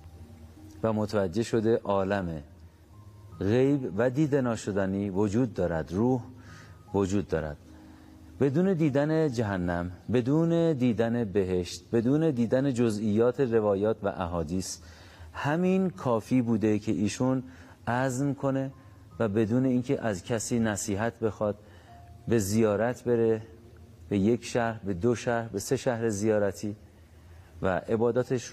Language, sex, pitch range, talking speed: Persian, male, 90-120 Hz, 110 wpm